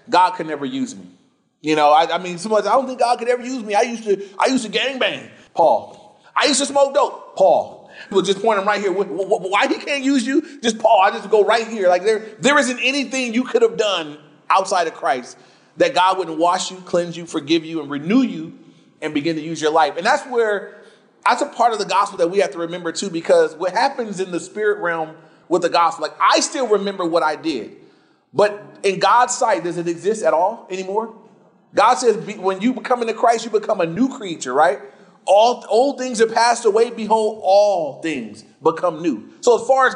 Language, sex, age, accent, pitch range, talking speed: English, male, 30-49, American, 175-250 Hz, 230 wpm